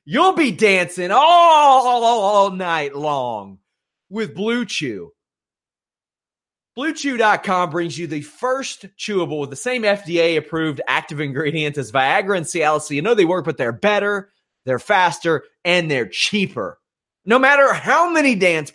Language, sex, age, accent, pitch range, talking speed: English, male, 30-49, American, 165-260 Hz, 140 wpm